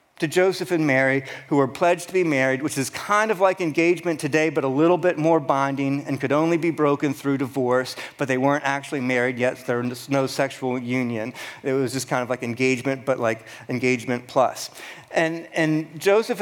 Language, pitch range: English, 135-170 Hz